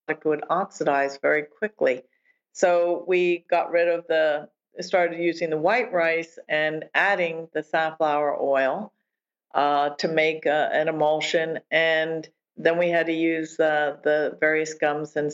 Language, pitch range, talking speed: English, 155-180 Hz, 145 wpm